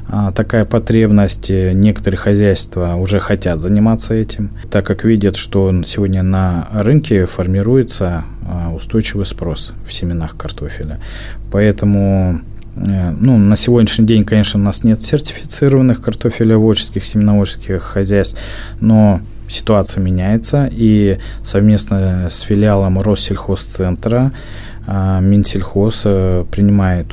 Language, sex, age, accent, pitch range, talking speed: Russian, male, 20-39, native, 90-110 Hz, 95 wpm